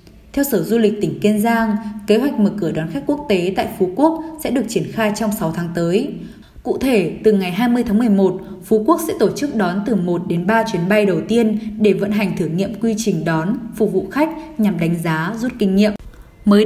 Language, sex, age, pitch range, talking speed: Vietnamese, female, 10-29, 190-235 Hz, 235 wpm